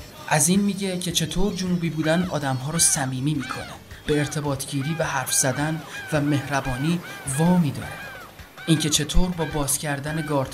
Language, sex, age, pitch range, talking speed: Persian, male, 30-49, 140-165 Hz, 155 wpm